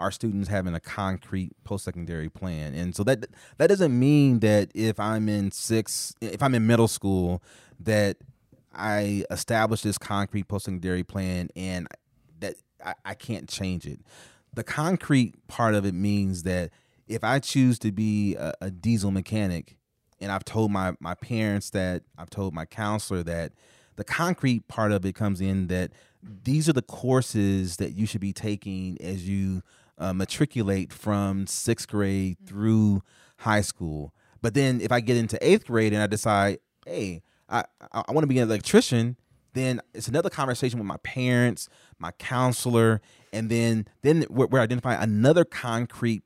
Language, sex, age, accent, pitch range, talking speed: English, male, 30-49, American, 95-115 Hz, 170 wpm